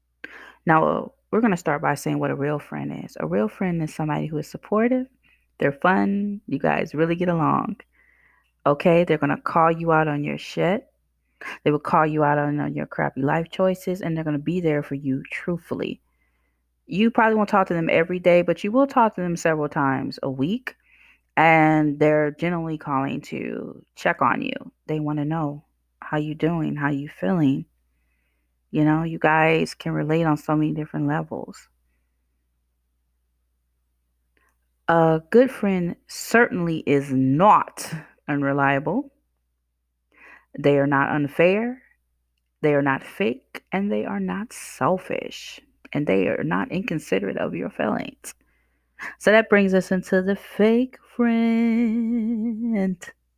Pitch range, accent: 135-185 Hz, American